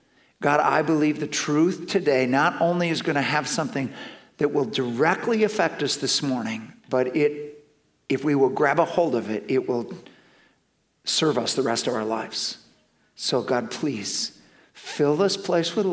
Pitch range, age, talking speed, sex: 150-230 Hz, 50-69, 175 wpm, male